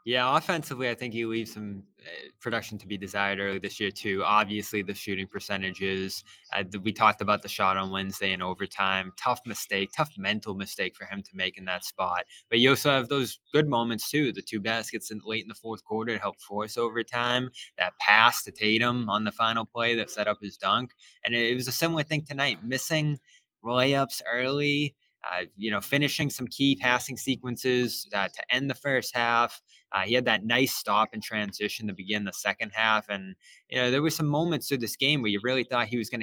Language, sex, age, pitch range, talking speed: English, male, 20-39, 100-125 Hz, 215 wpm